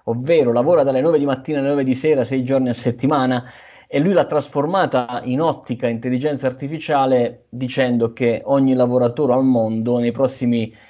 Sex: male